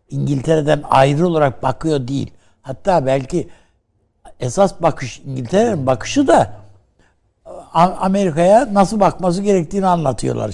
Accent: native